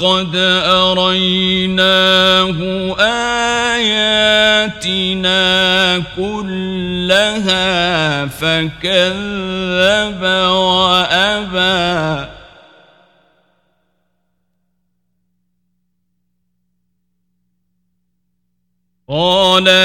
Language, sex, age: Arabic, male, 40-59